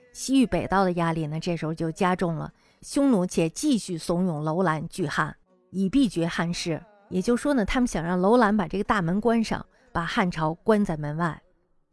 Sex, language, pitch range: female, Chinese, 165-220 Hz